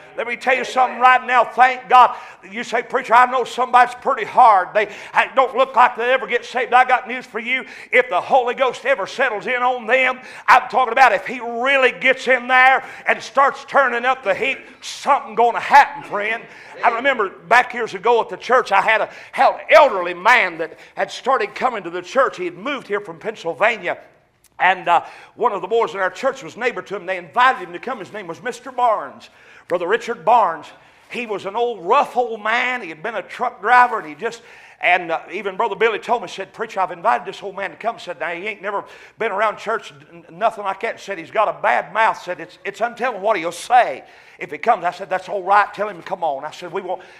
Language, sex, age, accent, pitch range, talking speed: English, male, 50-69, American, 190-245 Hz, 235 wpm